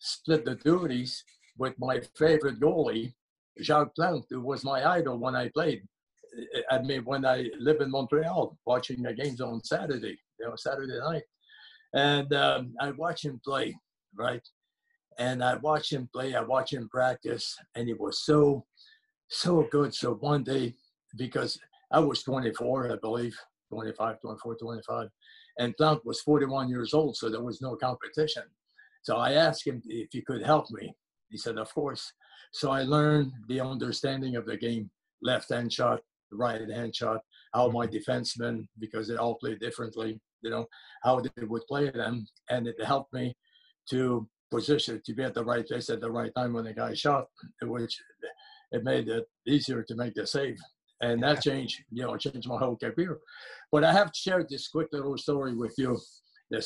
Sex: male